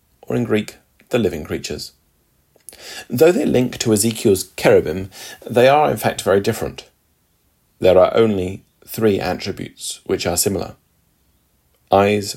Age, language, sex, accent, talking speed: 40-59, English, male, British, 130 wpm